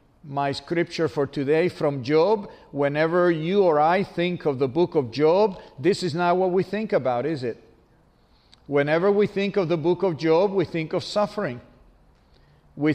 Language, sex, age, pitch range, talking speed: English, male, 50-69, 150-195 Hz, 175 wpm